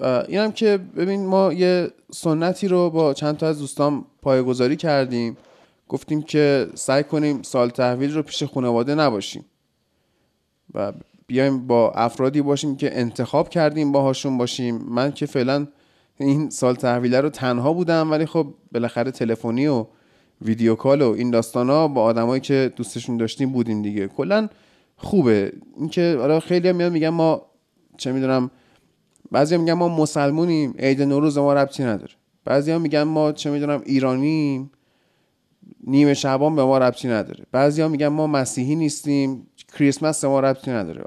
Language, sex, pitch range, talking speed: Persian, male, 130-160 Hz, 150 wpm